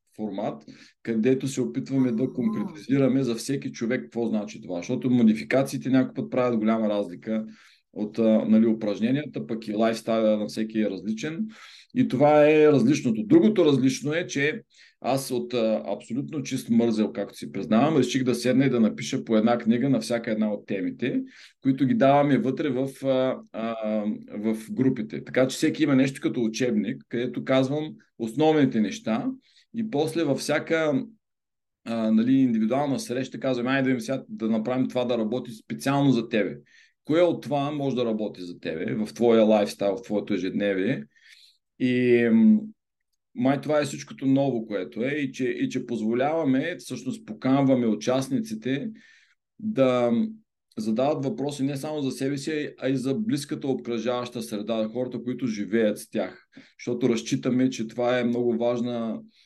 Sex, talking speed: male, 160 wpm